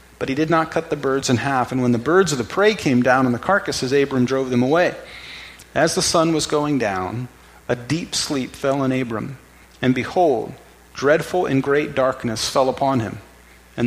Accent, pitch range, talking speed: American, 125-155 Hz, 205 wpm